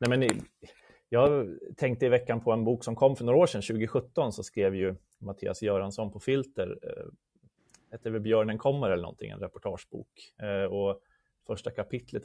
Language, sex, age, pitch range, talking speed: Swedish, male, 30-49, 95-115 Hz, 160 wpm